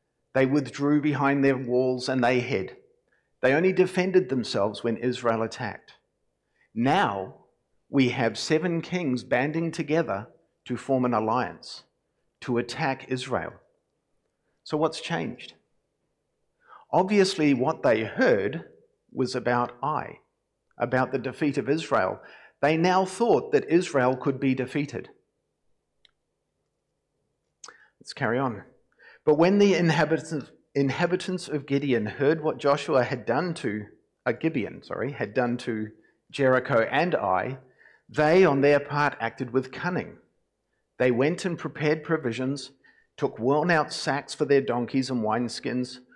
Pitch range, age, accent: 125-155 Hz, 50-69, Australian